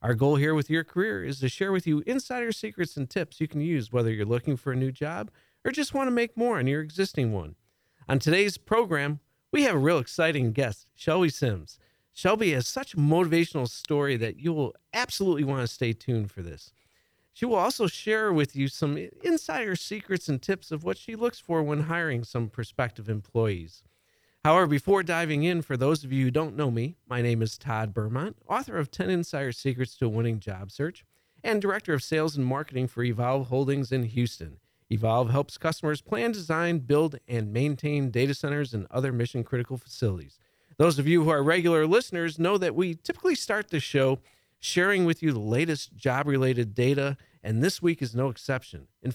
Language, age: English, 40-59